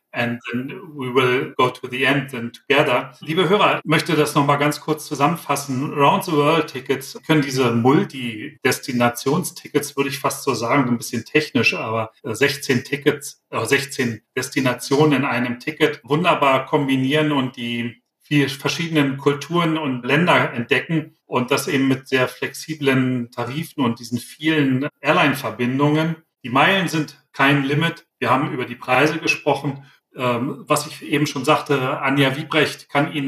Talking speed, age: 150 wpm, 40-59